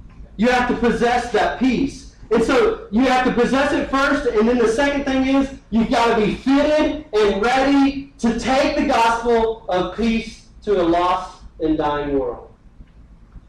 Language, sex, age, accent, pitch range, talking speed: English, male, 30-49, American, 180-240 Hz, 175 wpm